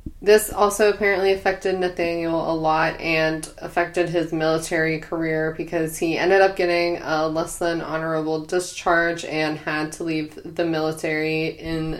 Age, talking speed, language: 20-39, 145 wpm, English